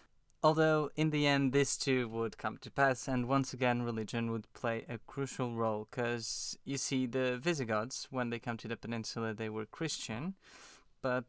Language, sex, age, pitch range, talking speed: English, male, 20-39, 115-145 Hz, 180 wpm